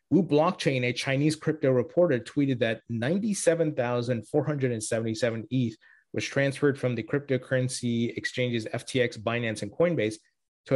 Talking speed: 115 wpm